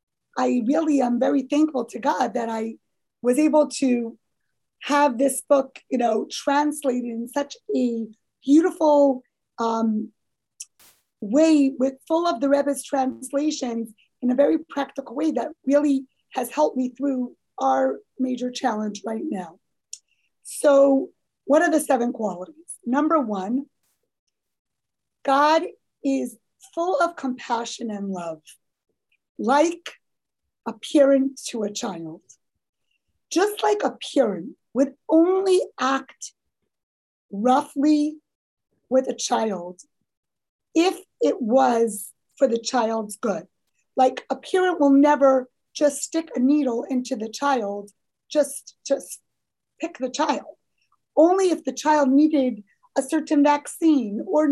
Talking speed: 120 wpm